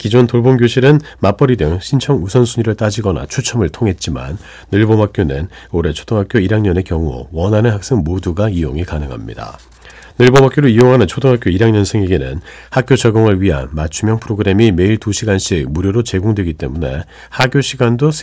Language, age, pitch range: Korean, 40-59, 80-120 Hz